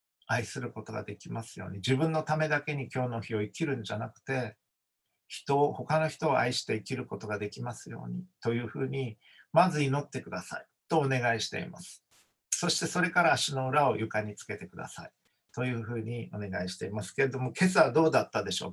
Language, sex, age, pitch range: Japanese, male, 50-69, 110-150 Hz